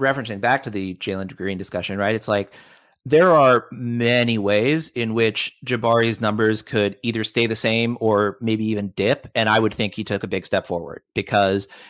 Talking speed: 190 wpm